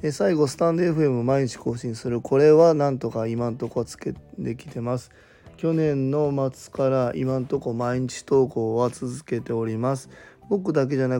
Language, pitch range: Japanese, 120-145 Hz